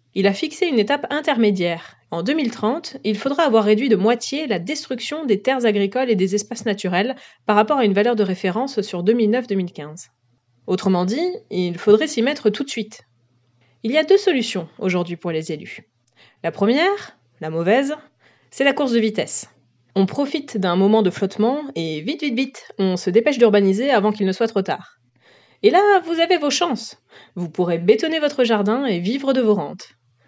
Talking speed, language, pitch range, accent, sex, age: 190 wpm, French, 185-255 Hz, French, female, 30-49